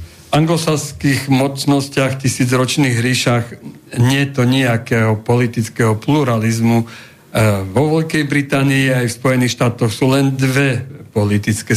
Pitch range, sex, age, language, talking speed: 115-140 Hz, male, 60-79, Slovak, 100 wpm